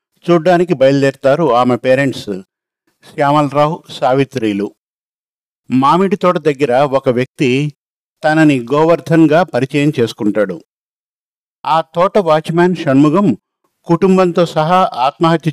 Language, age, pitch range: Telugu, 50-69, 135-170 Hz